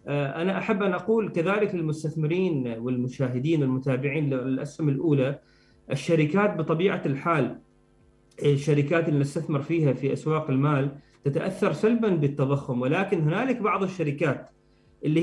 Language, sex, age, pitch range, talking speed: Arabic, male, 30-49, 140-180 Hz, 110 wpm